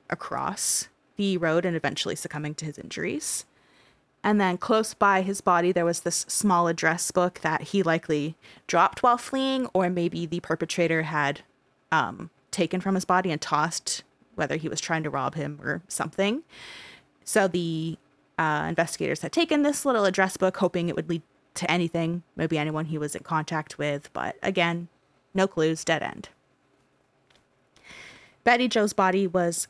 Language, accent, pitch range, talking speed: English, American, 165-200 Hz, 165 wpm